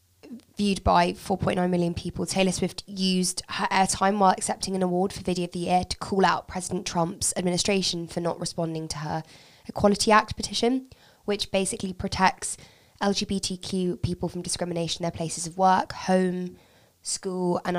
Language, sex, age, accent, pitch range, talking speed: English, female, 20-39, British, 175-200 Hz, 160 wpm